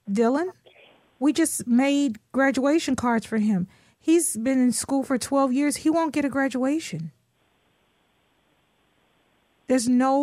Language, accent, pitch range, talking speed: English, American, 215-270 Hz, 130 wpm